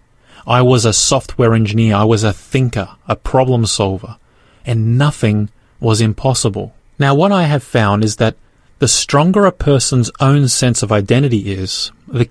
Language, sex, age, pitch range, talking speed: English, male, 30-49, 115-145 Hz, 160 wpm